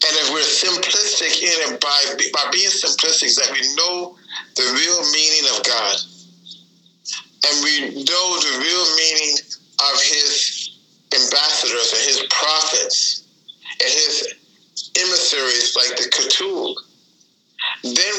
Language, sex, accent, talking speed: English, male, American, 120 wpm